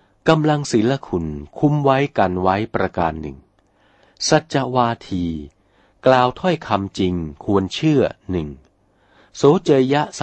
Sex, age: male, 60-79